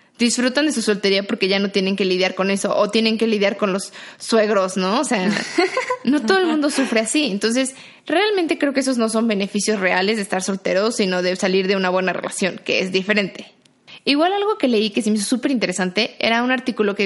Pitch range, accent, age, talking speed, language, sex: 215-280 Hz, Mexican, 20-39, 225 wpm, Spanish, female